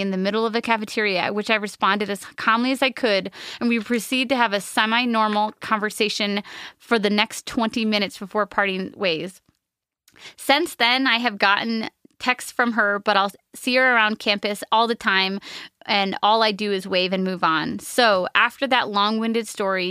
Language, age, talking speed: English, 20-39, 185 wpm